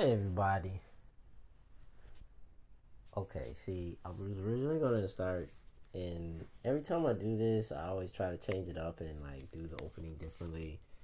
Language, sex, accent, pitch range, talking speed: English, male, American, 90-125 Hz, 160 wpm